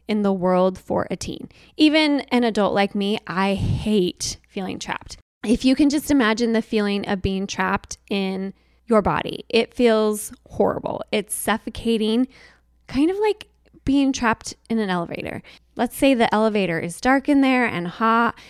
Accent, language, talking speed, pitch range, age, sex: American, English, 165 wpm, 190-240 Hz, 20-39, female